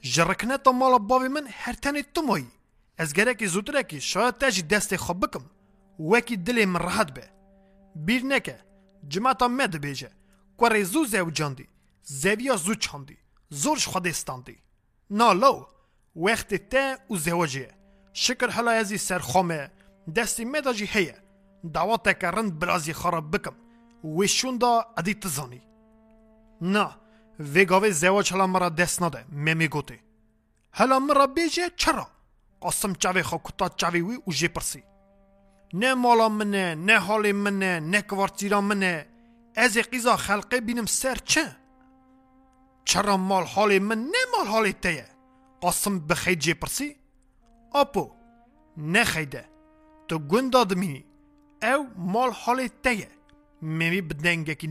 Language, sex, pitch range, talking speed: Turkish, male, 175-245 Hz, 125 wpm